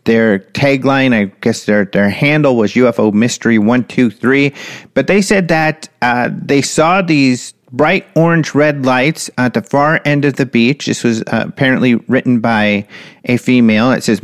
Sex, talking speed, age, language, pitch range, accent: male, 175 wpm, 40-59, English, 115-155 Hz, American